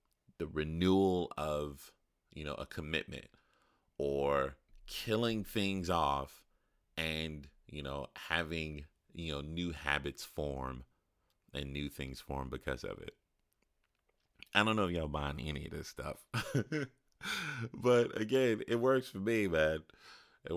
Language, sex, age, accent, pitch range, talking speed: English, male, 30-49, American, 70-95 Hz, 130 wpm